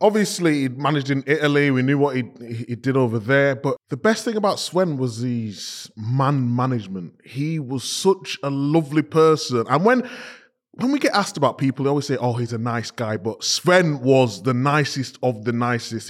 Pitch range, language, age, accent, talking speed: 120-155 Hz, English, 20-39, British, 195 wpm